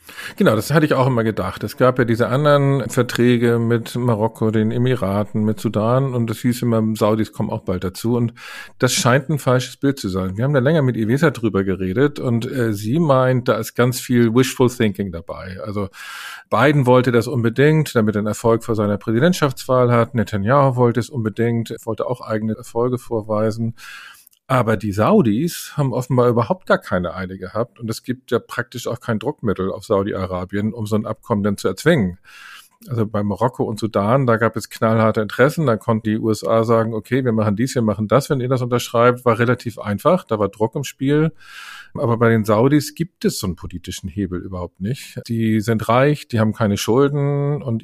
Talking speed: 200 wpm